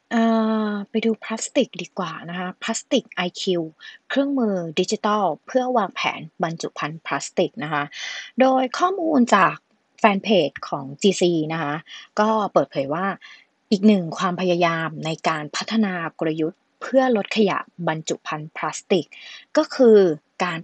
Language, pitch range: English, 175-235 Hz